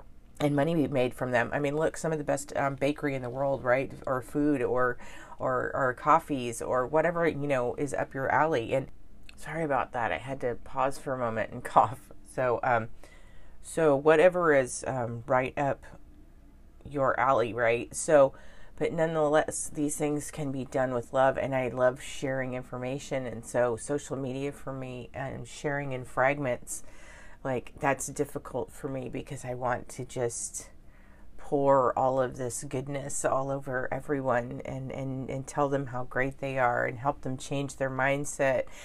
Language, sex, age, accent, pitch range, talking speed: English, female, 30-49, American, 125-145 Hz, 180 wpm